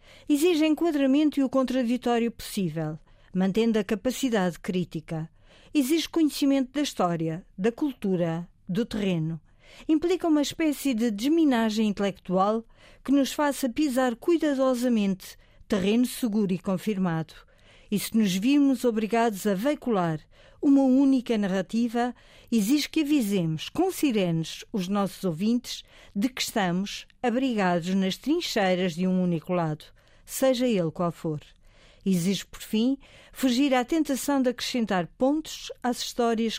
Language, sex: Portuguese, female